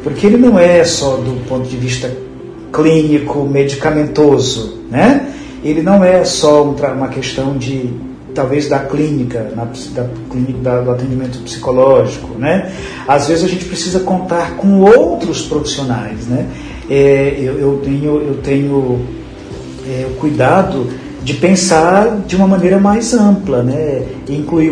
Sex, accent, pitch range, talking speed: male, Brazilian, 125-155 Hz, 120 wpm